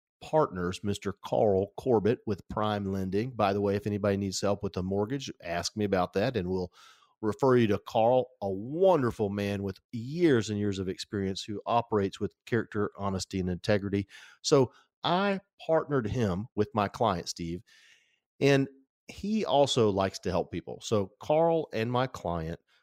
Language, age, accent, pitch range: English, 40-59, American, 100-135 Hz